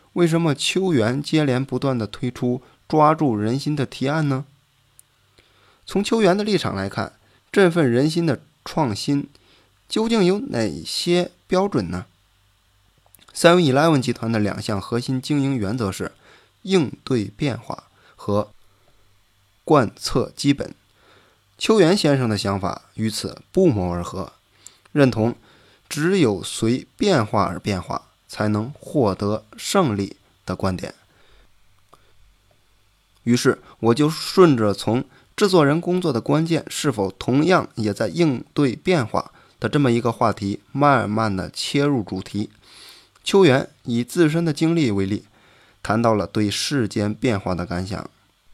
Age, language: 20-39, Chinese